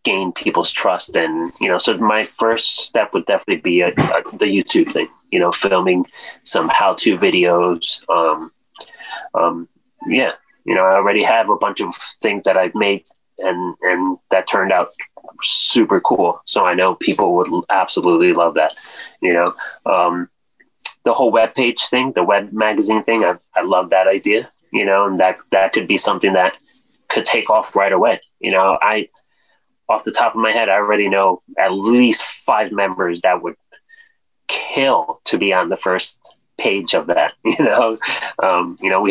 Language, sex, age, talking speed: English, male, 30-49, 185 wpm